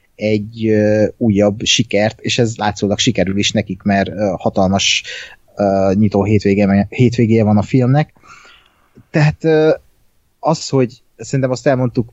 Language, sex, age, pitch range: Hungarian, male, 30-49, 100-125 Hz